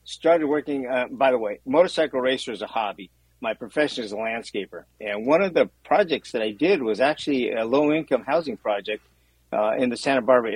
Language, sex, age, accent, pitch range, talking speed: English, male, 50-69, American, 105-135 Hz, 200 wpm